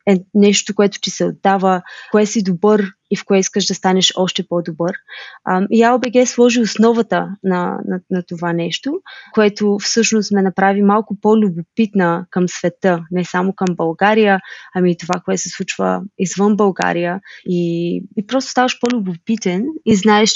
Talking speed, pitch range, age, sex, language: 155 wpm, 180-215 Hz, 20-39, female, Bulgarian